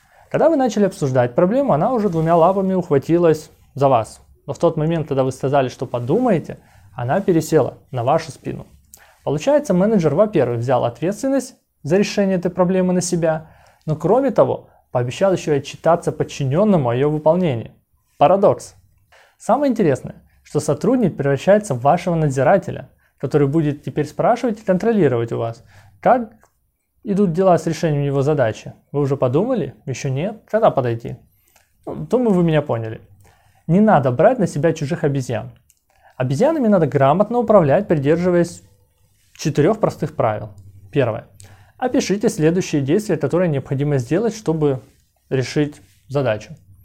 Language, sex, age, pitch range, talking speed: Russian, male, 20-39, 130-185 Hz, 140 wpm